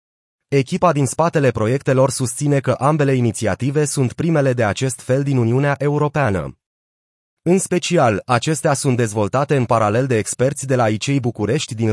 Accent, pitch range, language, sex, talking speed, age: native, 115-150 Hz, Romanian, male, 150 wpm, 30-49